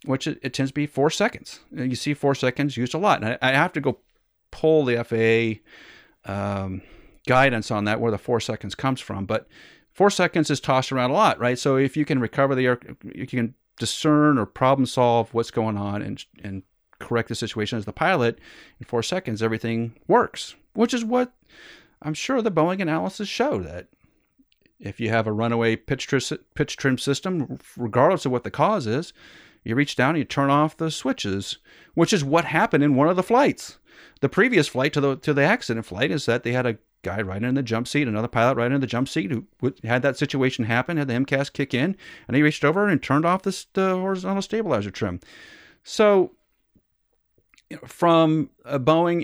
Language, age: English, 40-59